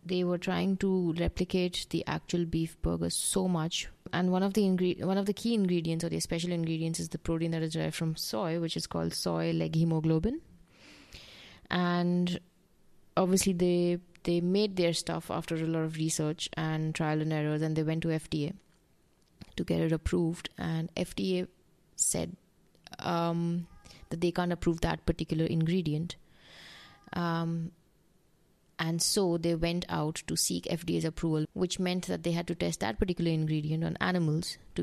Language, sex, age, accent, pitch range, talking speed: English, female, 20-39, Indian, 160-180 Hz, 170 wpm